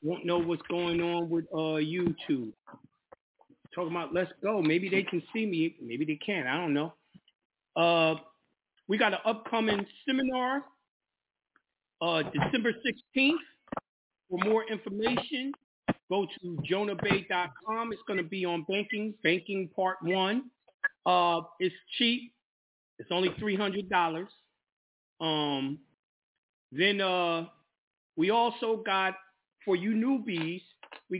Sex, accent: male, American